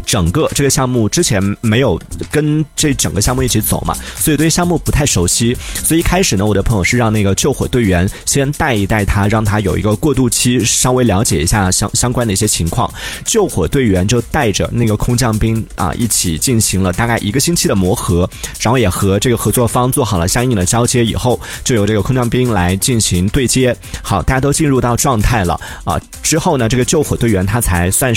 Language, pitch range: Chinese, 95-130 Hz